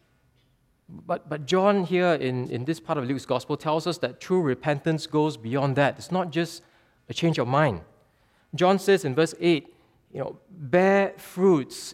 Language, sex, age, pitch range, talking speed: English, male, 20-39, 140-180 Hz, 175 wpm